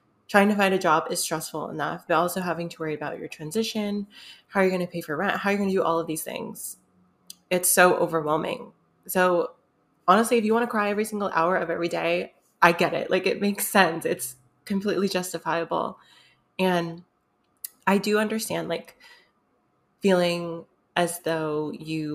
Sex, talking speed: female, 180 wpm